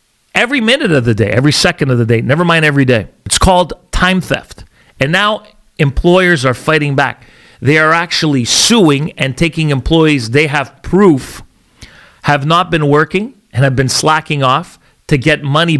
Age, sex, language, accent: 40-59, male, English, American